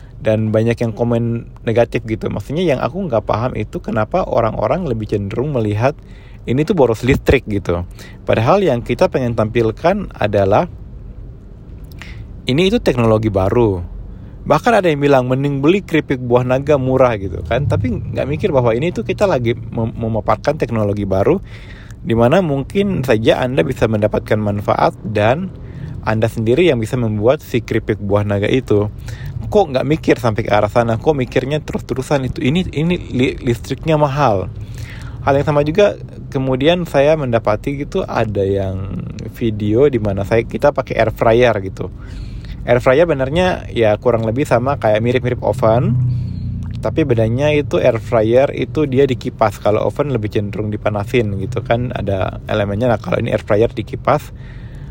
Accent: native